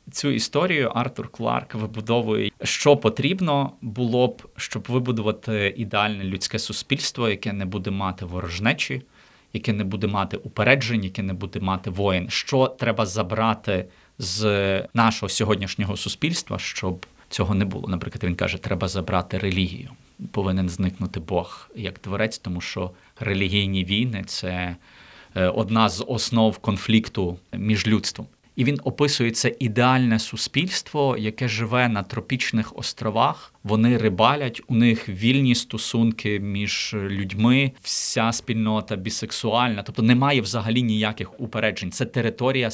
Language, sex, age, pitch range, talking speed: Ukrainian, male, 30-49, 100-120 Hz, 130 wpm